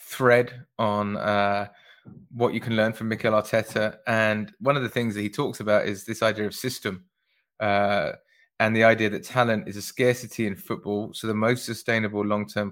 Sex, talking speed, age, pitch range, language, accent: male, 190 wpm, 20-39, 105-120 Hz, English, British